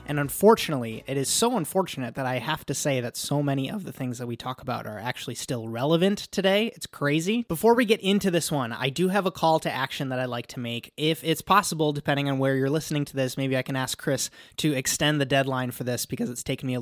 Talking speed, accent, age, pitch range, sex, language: 255 wpm, American, 20-39, 130-170 Hz, male, English